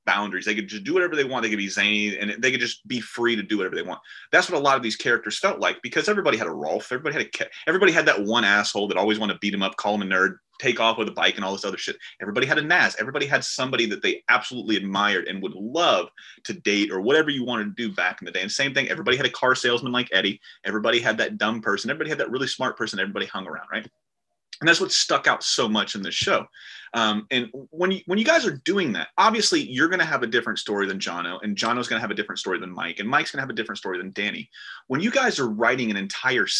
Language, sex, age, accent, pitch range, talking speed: English, male, 30-49, American, 105-130 Hz, 285 wpm